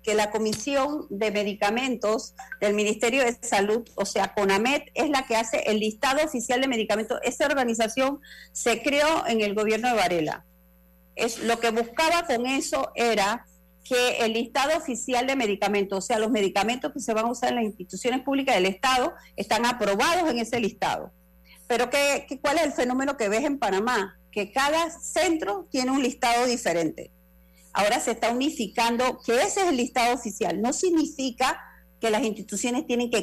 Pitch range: 205-270 Hz